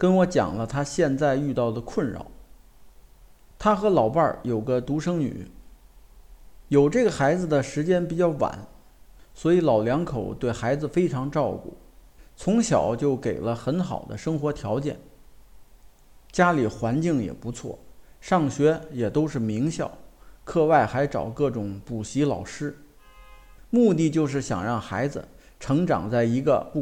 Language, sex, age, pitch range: Chinese, male, 50-69, 120-165 Hz